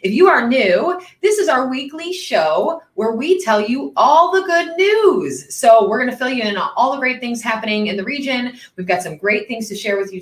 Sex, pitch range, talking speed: female, 185-265 Hz, 245 wpm